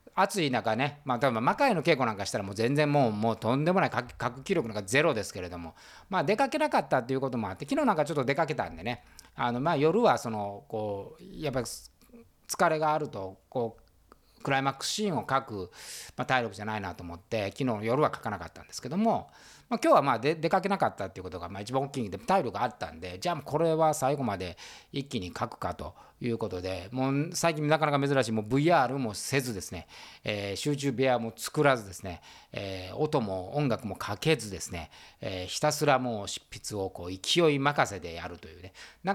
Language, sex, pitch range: Japanese, male, 105-160 Hz